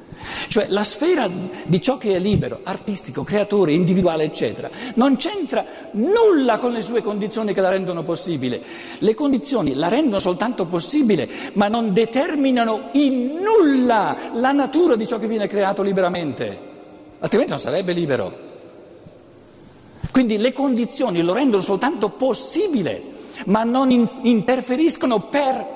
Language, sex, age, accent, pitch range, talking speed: Italian, male, 50-69, native, 170-250 Hz, 135 wpm